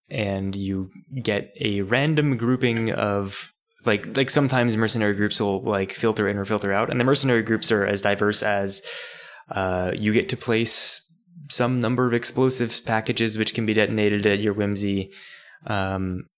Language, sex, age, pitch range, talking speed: English, male, 20-39, 100-125 Hz, 165 wpm